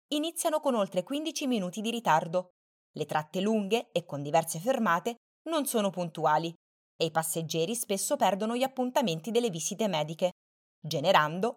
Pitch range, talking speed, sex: 170-230 Hz, 145 wpm, female